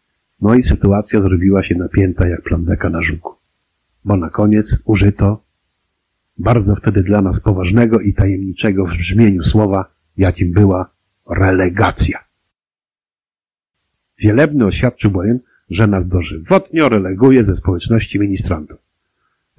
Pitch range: 90-110 Hz